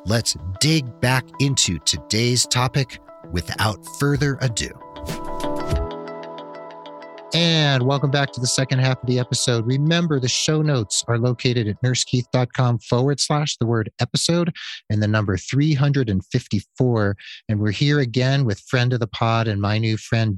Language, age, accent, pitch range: English, 40-59, American, 100-130 Hz